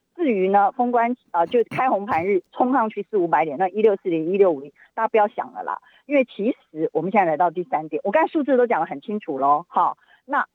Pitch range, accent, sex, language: 175-260 Hz, native, female, Chinese